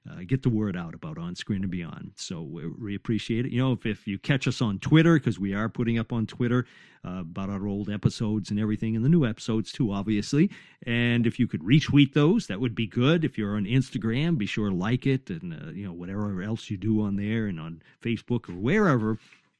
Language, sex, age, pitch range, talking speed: English, male, 50-69, 110-155 Hz, 235 wpm